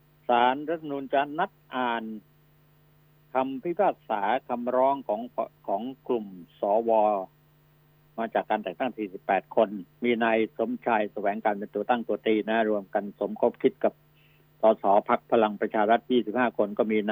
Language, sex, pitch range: Thai, male, 110-150 Hz